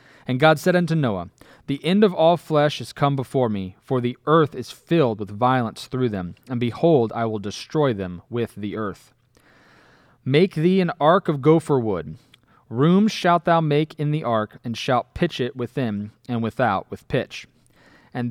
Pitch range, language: 120-155 Hz, English